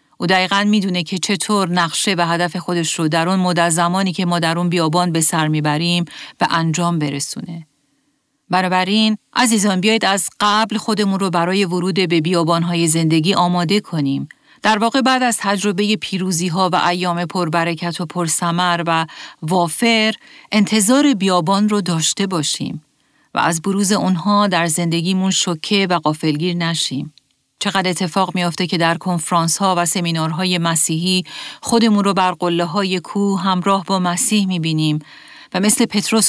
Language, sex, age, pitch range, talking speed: Persian, female, 40-59, 165-195 Hz, 150 wpm